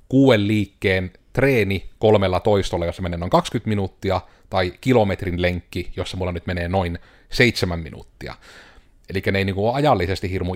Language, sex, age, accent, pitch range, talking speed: Finnish, male, 30-49, native, 95-115 Hz, 160 wpm